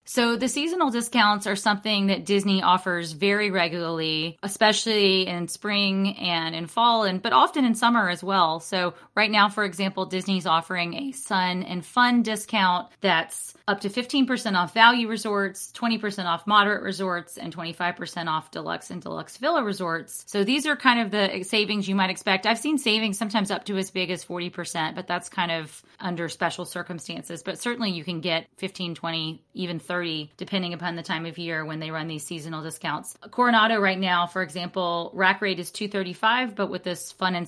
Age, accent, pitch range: 30-49, American, 175-210 Hz